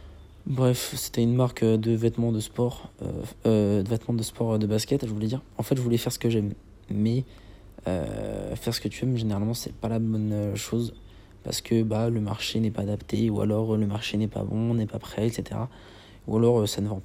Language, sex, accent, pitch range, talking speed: French, male, French, 105-120 Hz, 230 wpm